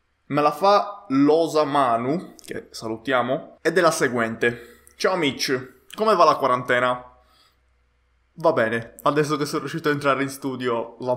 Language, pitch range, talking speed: Italian, 115-140 Hz, 150 wpm